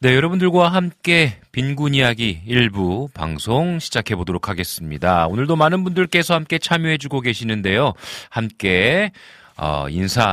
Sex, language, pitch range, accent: male, Korean, 90-140 Hz, native